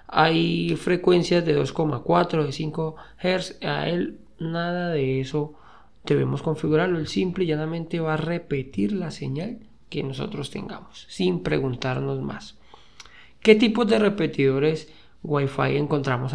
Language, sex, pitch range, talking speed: Spanish, male, 135-170 Hz, 130 wpm